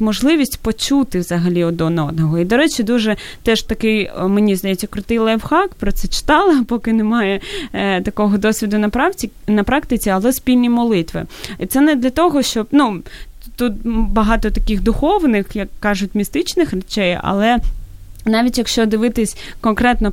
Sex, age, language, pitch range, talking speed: female, 20-39, Ukrainian, 205-245 Hz, 135 wpm